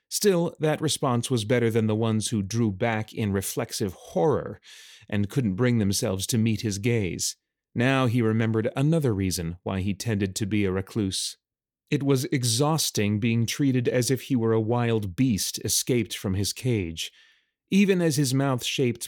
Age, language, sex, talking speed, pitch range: 30-49, English, male, 170 wpm, 105-135 Hz